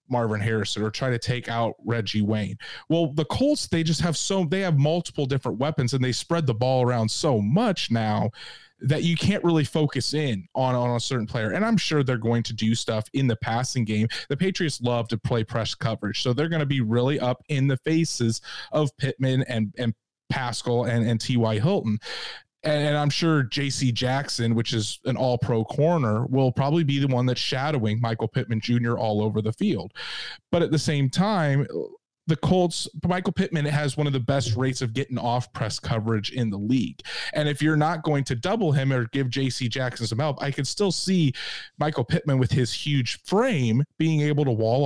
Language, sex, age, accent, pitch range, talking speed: English, male, 30-49, American, 120-150 Hz, 205 wpm